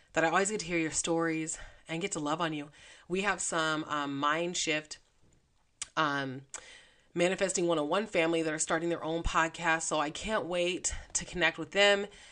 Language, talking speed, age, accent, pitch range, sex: English, 185 wpm, 30-49, American, 150-175 Hz, female